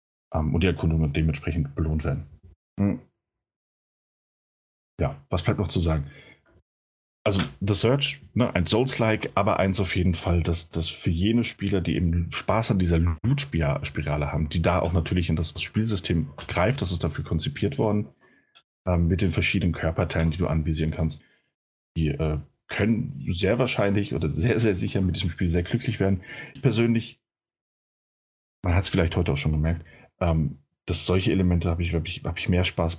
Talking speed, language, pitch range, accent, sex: 165 wpm, German, 80-100 Hz, German, male